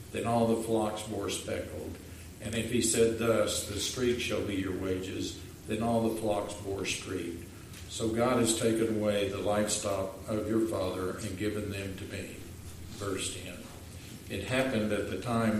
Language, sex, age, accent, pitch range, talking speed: English, male, 50-69, American, 95-110 Hz, 175 wpm